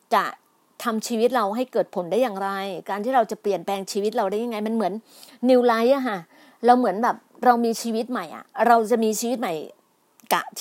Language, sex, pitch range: Thai, female, 190-235 Hz